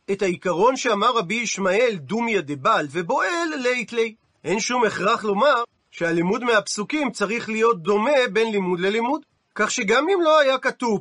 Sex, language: male, Hebrew